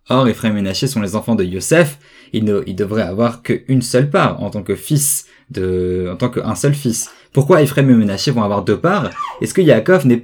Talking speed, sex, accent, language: 225 wpm, male, French, French